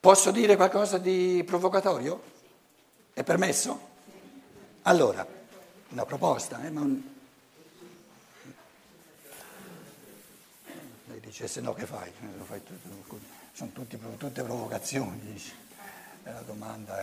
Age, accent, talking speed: 60-79, native, 90 wpm